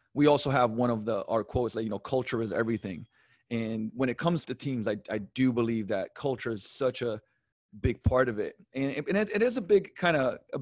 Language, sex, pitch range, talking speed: English, male, 115-140 Hz, 245 wpm